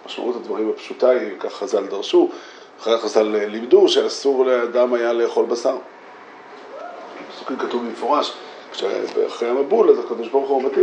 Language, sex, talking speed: Hebrew, male, 135 wpm